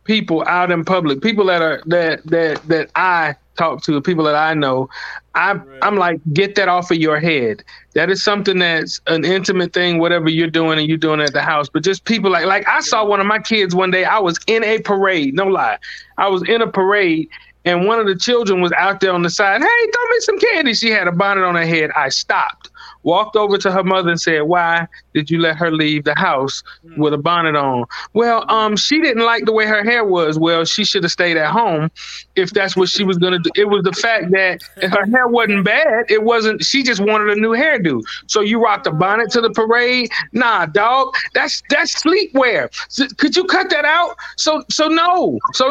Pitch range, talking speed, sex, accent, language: 175-250 Hz, 230 wpm, male, American, English